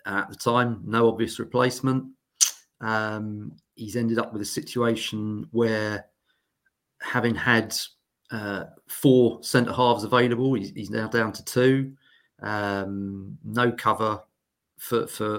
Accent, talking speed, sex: British, 115 wpm, male